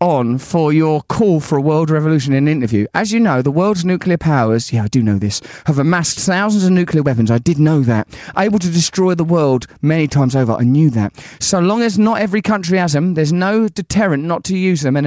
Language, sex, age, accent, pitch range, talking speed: English, male, 30-49, British, 140-185 Hz, 240 wpm